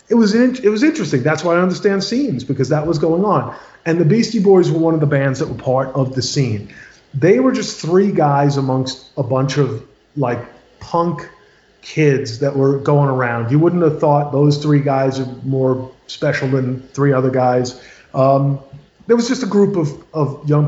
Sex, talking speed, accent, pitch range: male, 205 wpm, American, 140-195 Hz